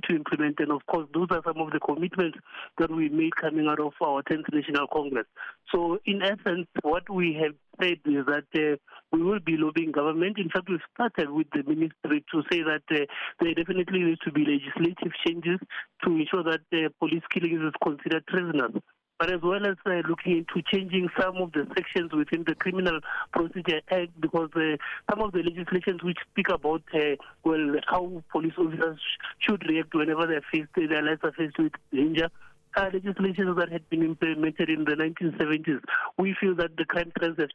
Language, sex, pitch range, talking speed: English, male, 160-185 Hz, 190 wpm